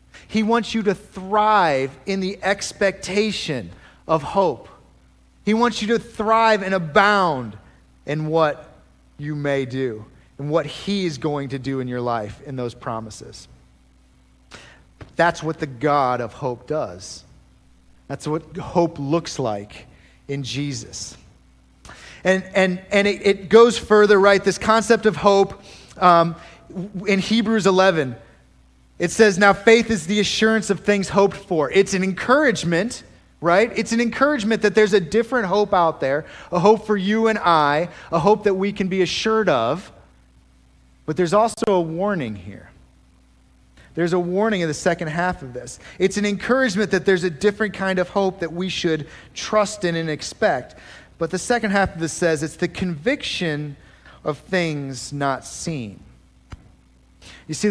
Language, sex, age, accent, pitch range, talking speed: English, male, 30-49, American, 125-200 Hz, 155 wpm